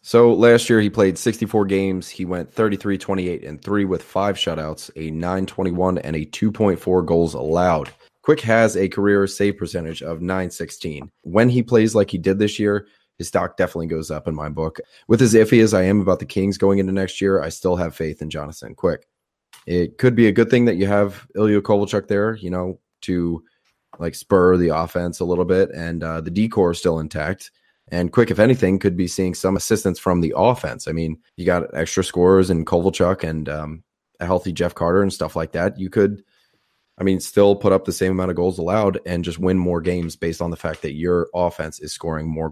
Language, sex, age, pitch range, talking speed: English, male, 20-39, 85-100 Hz, 215 wpm